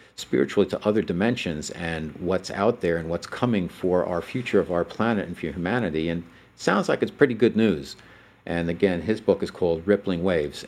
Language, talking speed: English, 195 wpm